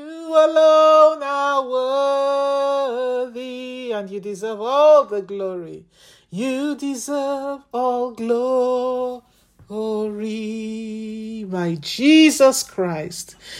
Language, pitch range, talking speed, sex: English, 190-235 Hz, 75 wpm, male